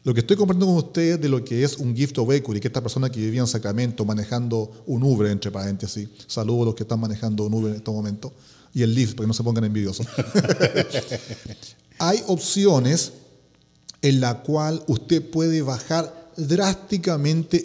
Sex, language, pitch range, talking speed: male, Spanish, 120-160 Hz, 185 wpm